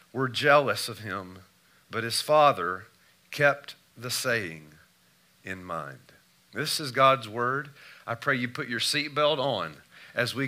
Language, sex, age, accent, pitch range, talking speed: English, male, 40-59, American, 105-130 Hz, 145 wpm